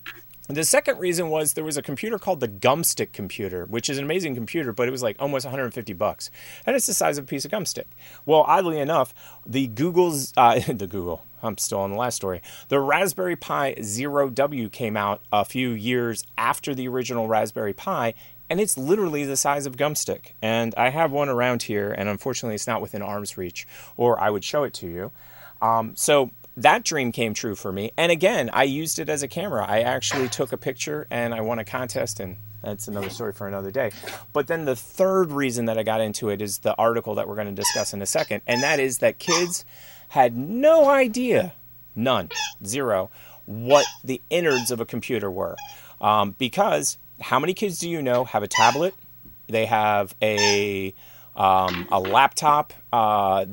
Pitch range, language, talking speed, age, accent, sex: 105-145 Hz, English, 200 wpm, 30-49, American, male